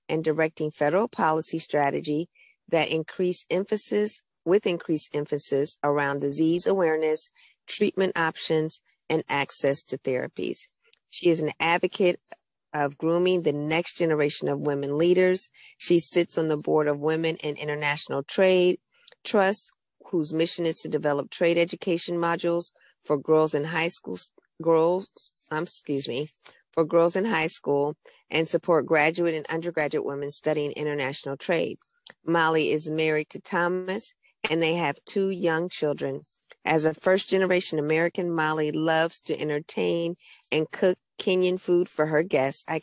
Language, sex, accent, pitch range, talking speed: English, female, American, 150-175 Hz, 140 wpm